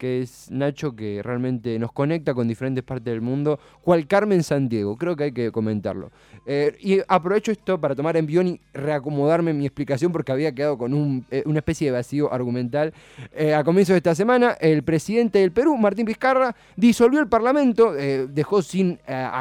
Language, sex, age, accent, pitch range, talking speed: Spanish, male, 20-39, Argentinian, 130-175 Hz, 190 wpm